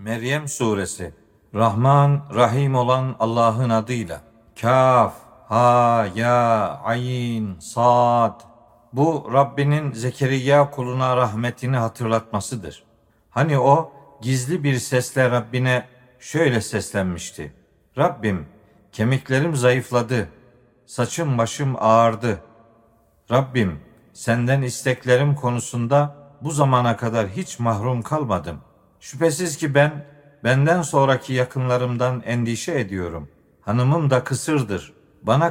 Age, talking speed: 50-69, 90 wpm